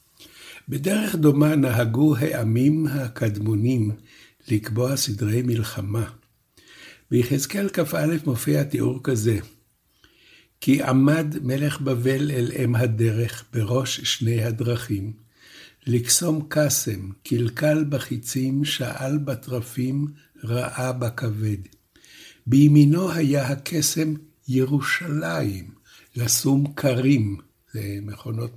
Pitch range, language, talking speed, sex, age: 115-150 Hz, Hebrew, 80 wpm, male, 60-79